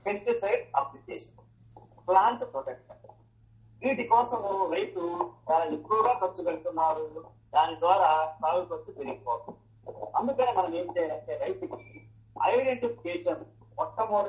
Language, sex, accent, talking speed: Telugu, male, native, 90 wpm